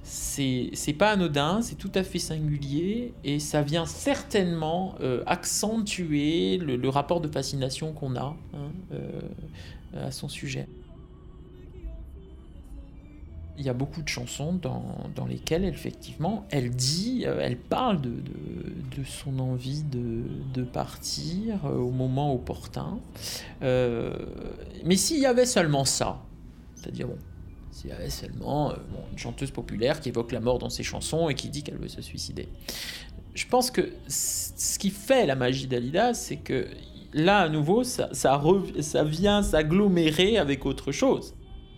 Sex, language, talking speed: male, French, 150 wpm